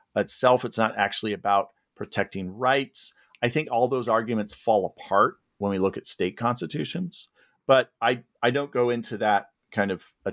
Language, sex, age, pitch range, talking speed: English, male, 40-59, 105-150 Hz, 175 wpm